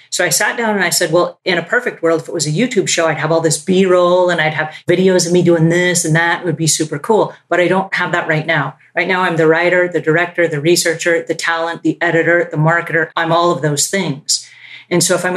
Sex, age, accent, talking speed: female, 30-49, American, 270 wpm